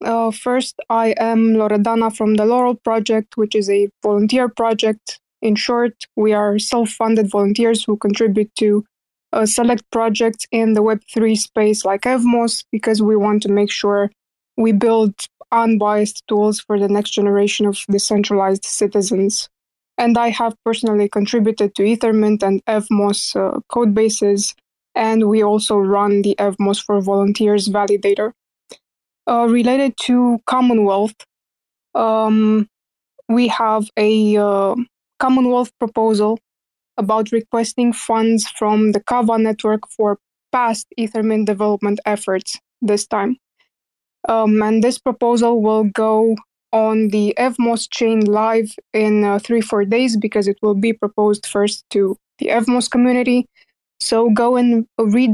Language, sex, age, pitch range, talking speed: English, female, 20-39, 210-230 Hz, 135 wpm